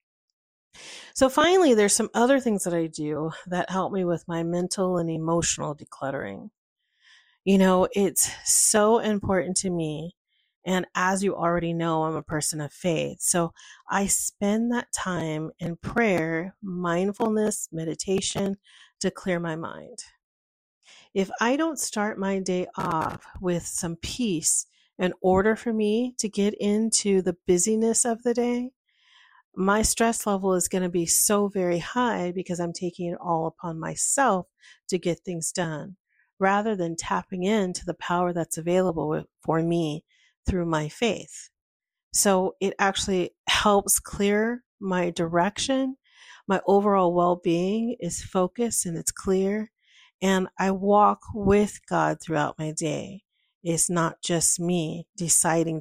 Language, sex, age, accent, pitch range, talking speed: English, female, 40-59, American, 170-205 Hz, 140 wpm